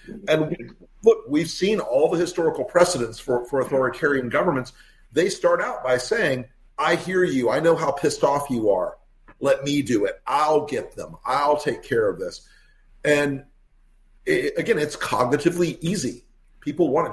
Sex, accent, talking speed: male, American, 170 wpm